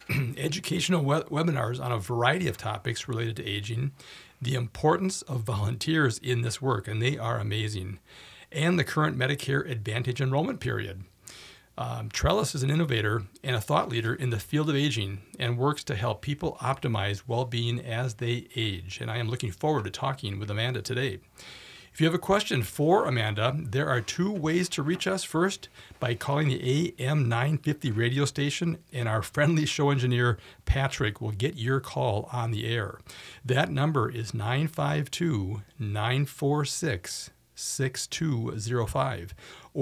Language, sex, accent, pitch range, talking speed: English, male, American, 115-145 Hz, 150 wpm